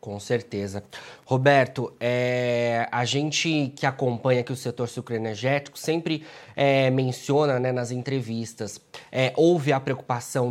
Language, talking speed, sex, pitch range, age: Portuguese, 110 wpm, male, 125-155 Hz, 20-39